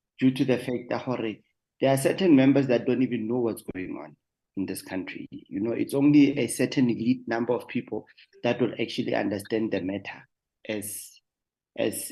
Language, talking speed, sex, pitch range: English, 185 wpm, male, 115-140 Hz